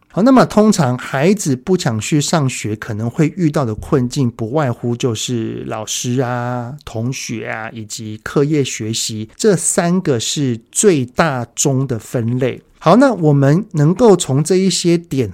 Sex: male